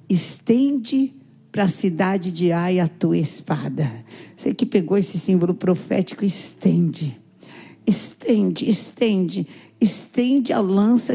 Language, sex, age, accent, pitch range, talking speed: Portuguese, female, 50-69, Brazilian, 185-240 Hz, 115 wpm